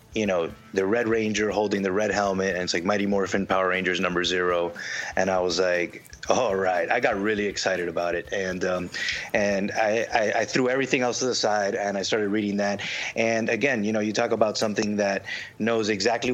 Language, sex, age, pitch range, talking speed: English, male, 30-49, 100-115 Hz, 215 wpm